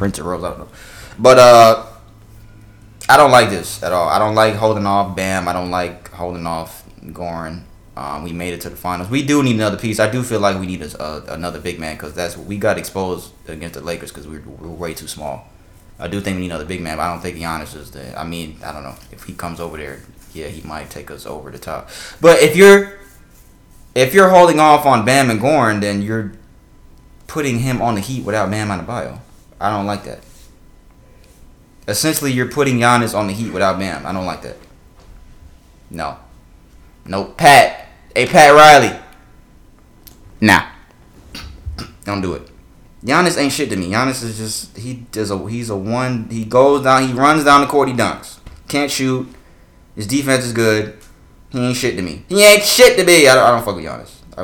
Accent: American